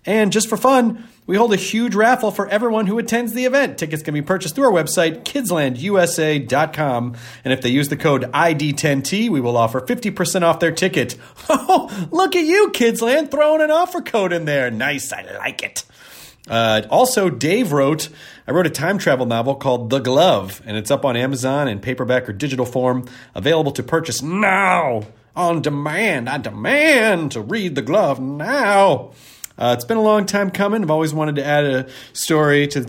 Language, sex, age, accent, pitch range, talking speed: English, male, 30-49, American, 125-195 Hz, 190 wpm